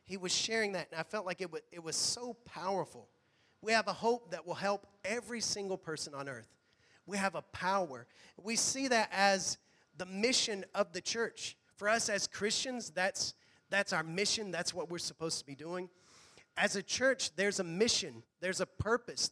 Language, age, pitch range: English, 40-59, 165-205 Hz